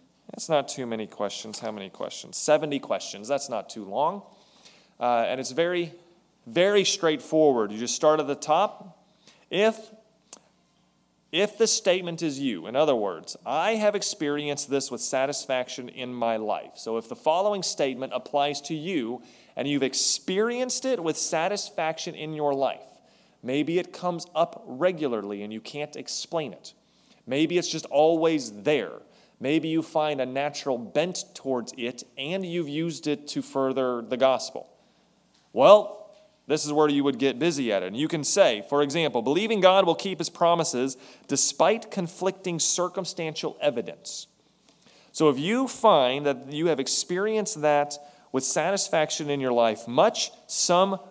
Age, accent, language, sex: 30-49, American, English, male